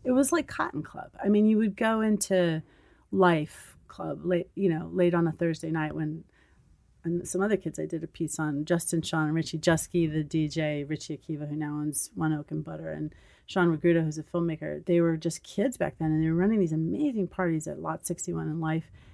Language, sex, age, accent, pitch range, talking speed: English, female, 30-49, American, 155-195 Hz, 225 wpm